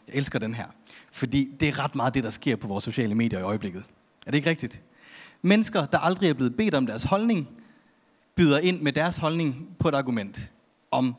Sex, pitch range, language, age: male, 120-165 Hz, Danish, 30-49